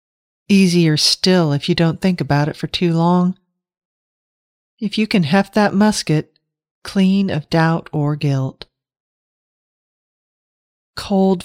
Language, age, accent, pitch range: English, 40-59, American, 145-180 Hz